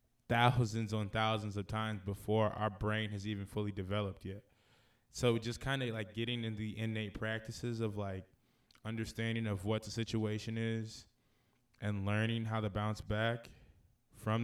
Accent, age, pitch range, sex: American, 20-39, 105-120 Hz, male